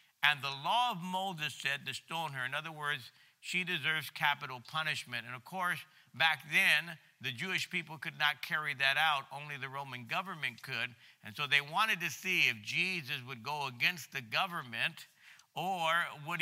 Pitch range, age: 140-180 Hz, 50-69